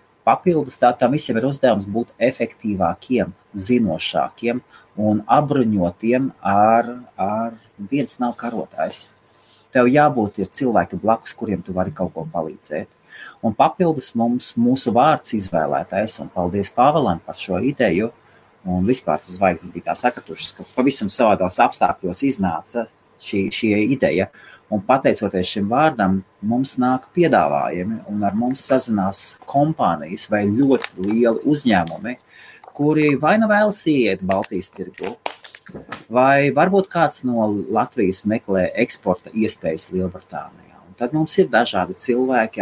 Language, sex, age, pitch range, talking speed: English, male, 30-49, 95-125 Hz, 120 wpm